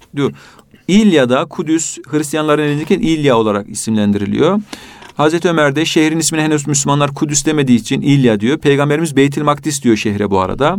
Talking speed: 150 wpm